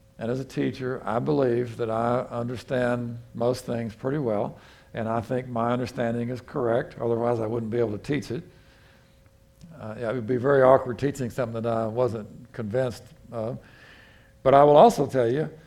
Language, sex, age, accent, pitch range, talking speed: English, male, 60-79, American, 115-145 Hz, 185 wpm